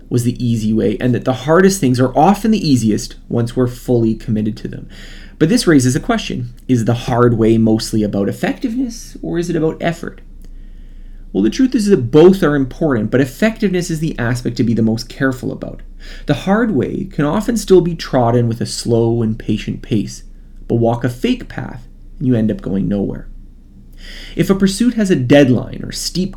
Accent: American